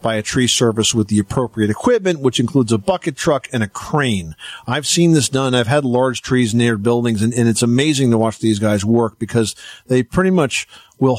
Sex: male